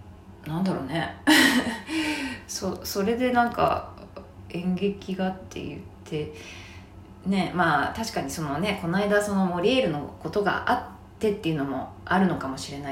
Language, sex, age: Japanese, female, 20-39